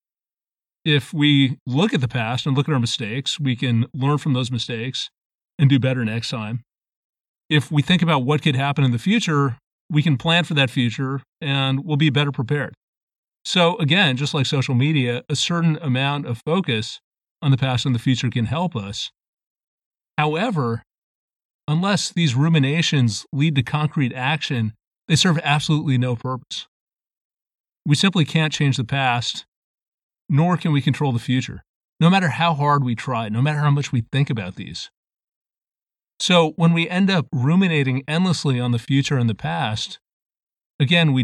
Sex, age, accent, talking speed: male, 40-59, American, 170 wpm